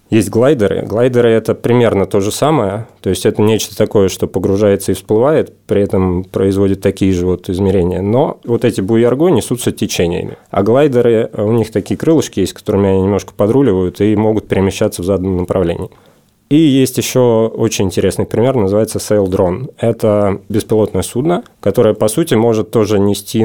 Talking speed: 165 wpm